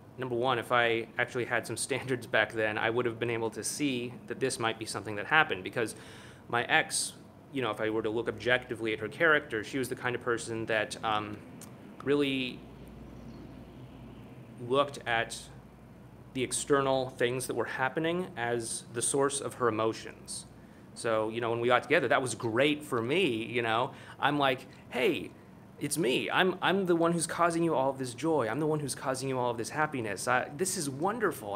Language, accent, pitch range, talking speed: English, American, 115-140 Hz, 200 wpm